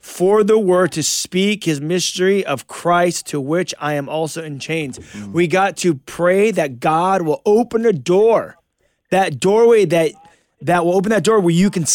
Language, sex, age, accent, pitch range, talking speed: English, male, 30-49, American, 145-185 Hz, 185 wpm